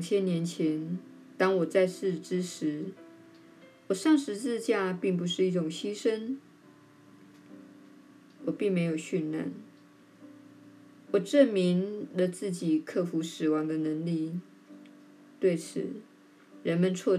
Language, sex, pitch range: Chinese, female, 155-210 Hz